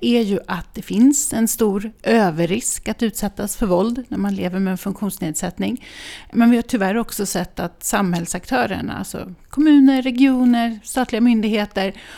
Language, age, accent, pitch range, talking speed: Swedish, 40-59, native, 195-255 Hz, 155 wpm